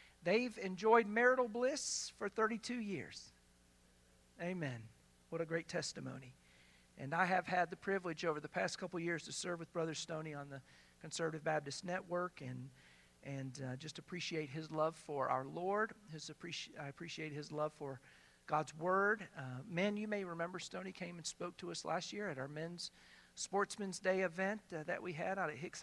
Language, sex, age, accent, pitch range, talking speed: English, male, 50-69, American, 140-185 Hz, 185 wpm